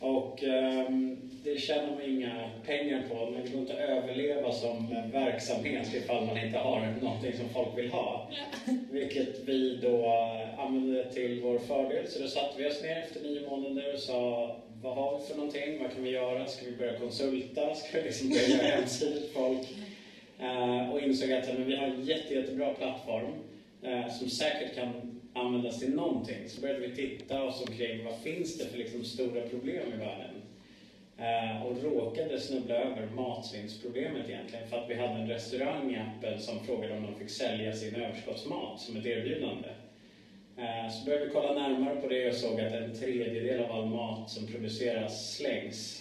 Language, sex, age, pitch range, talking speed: Swedish, male, 30-49, 115-135 Hz, 185 wpm